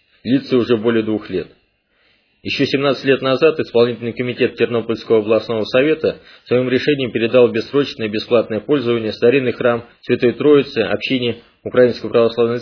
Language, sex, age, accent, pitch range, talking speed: Russian, male, 20-39, native, 115-140 Hz, 135 wpm